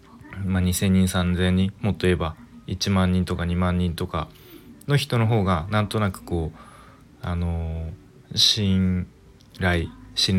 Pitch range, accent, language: 85-110 Hz, native, Japanese